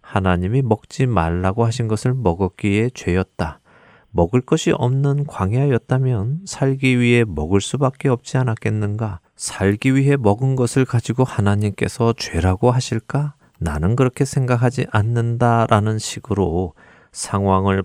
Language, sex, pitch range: Korean, male, 95-125 Hz